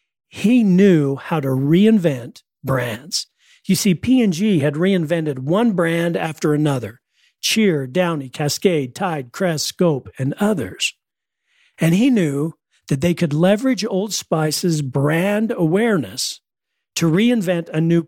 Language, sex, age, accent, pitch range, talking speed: English, male, 50-69, American, 145-190 Hz, 125 wpm